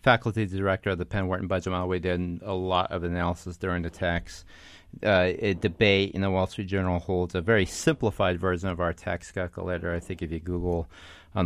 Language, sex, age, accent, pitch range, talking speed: English, male, 30-49, American, 85-105 Hz, 220 wpm